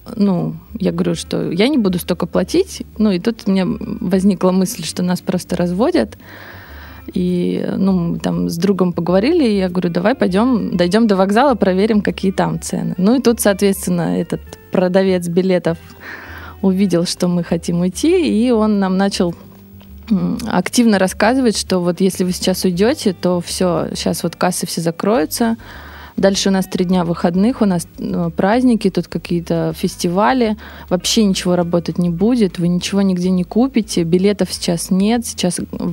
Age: 20-39